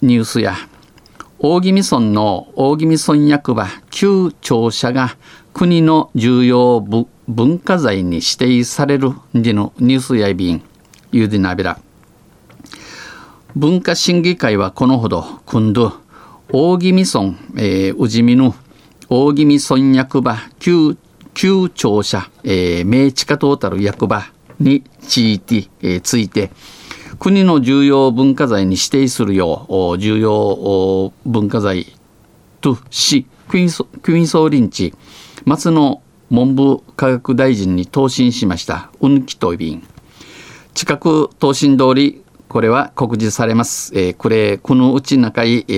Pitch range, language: 105-140 Hz, Japanese